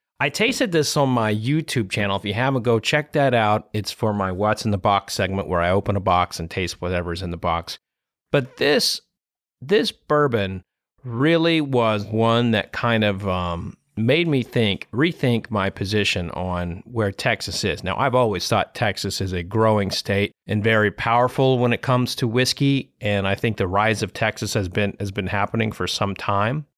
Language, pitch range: English, 100-125 Hz